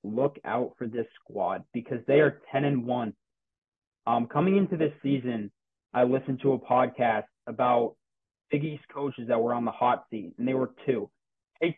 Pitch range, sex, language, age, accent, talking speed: 115-135 Hz, male, English, 20-39, American, 185 wpm